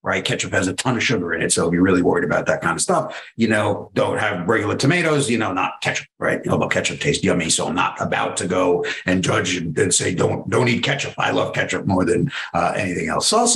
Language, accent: English, American